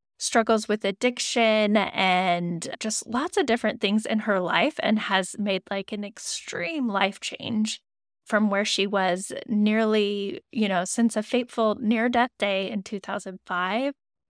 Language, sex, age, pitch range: English, female, 10-29, 195-240 Hz